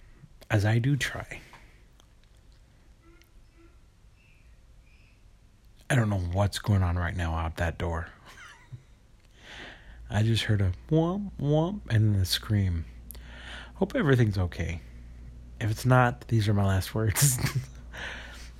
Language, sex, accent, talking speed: English, male, American, 115 wpm